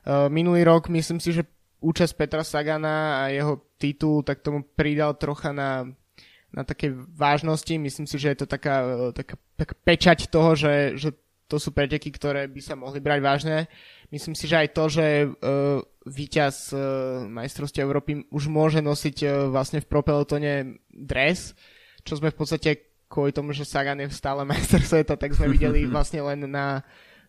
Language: Slovak